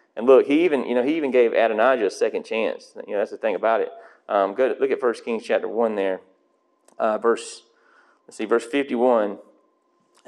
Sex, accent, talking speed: male, American, 210 wpm